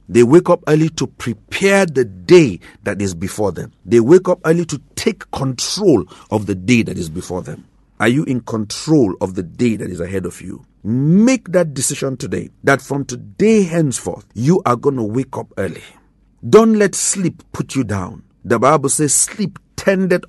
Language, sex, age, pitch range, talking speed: English, male, 50-69, 105-150 Hz, 190 wpm